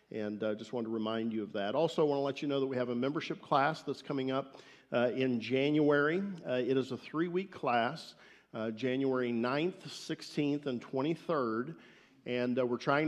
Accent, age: American, 50-69